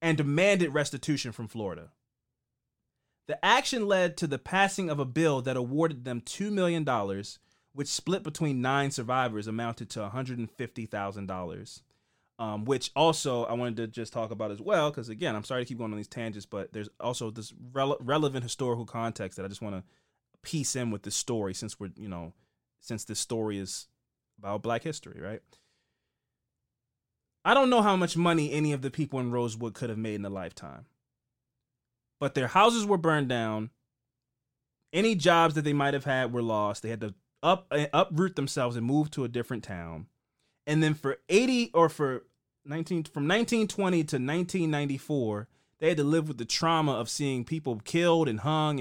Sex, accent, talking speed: male, American, 175 wpm